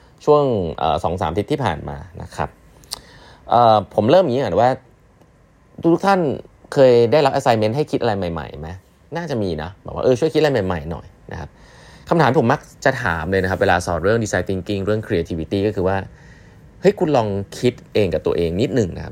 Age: 20-39